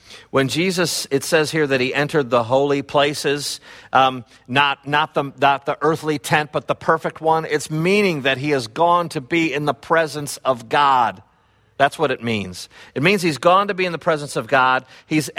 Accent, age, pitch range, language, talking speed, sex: American, 50-69, 125-165 Hz, English, 200 wpm, male